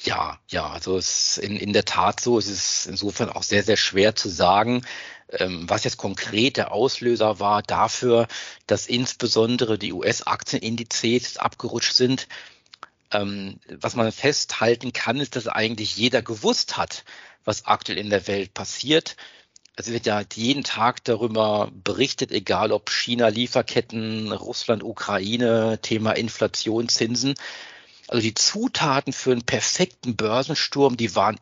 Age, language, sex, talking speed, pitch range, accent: 50-69, German, male, 145 wpm, 105-130 Hz, German